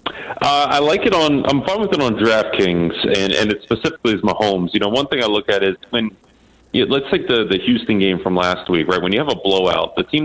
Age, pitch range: 30-49, 95-115 Hz